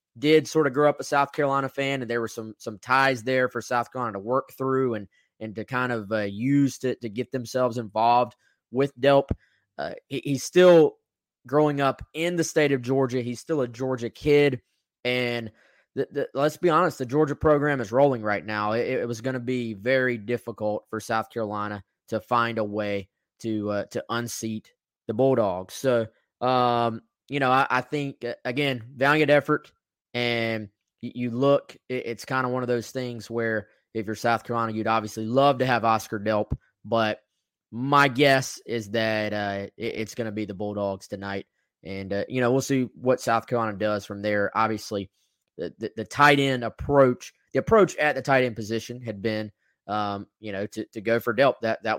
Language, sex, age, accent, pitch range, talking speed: English, male, 20-39, American, 110-130 Hz, 195 wpm